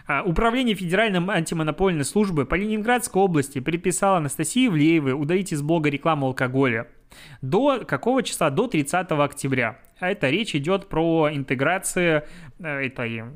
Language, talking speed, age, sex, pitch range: Russian, 125 wpm, 20-39, male, 135-180 Hz